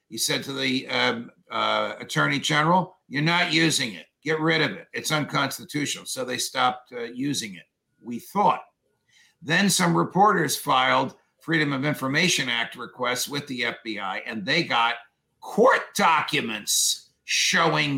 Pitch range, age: 140-185 Hz, 50-69